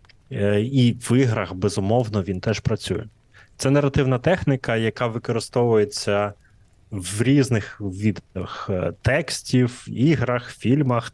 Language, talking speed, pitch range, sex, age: Ukrainian, 95 wpm, 105-130 Hz, male, 20-39